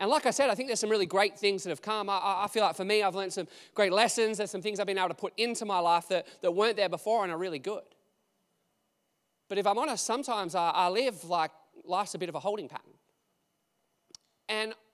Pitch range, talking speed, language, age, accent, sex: 180-225 Hz, 250 wpm, English, 20-39, Australian, male